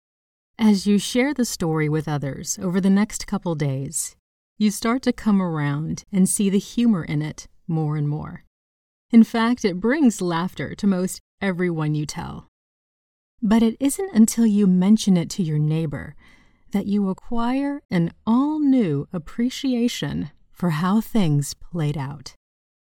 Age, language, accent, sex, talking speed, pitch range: 30-49, English, American, female, 150 wpm, 160-230 Hz